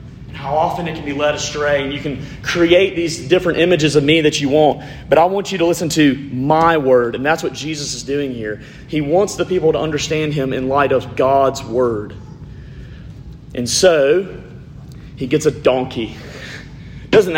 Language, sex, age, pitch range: English, male, 30-49, 130-155 Hz